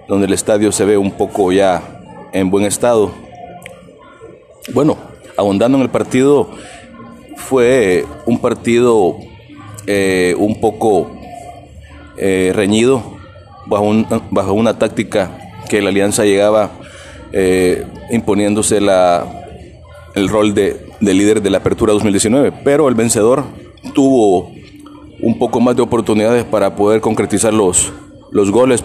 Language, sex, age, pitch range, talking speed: Spanish, male, 30-49, 100-115 Hz, 125 wpm